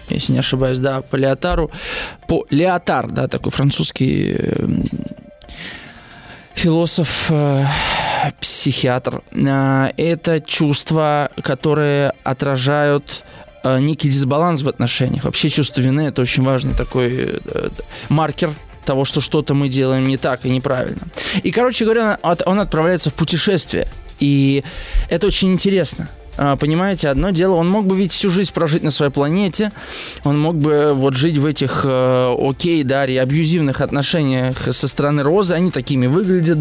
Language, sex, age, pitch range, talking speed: Russian, male, 20-39, 140-175 Hz, 130 wpm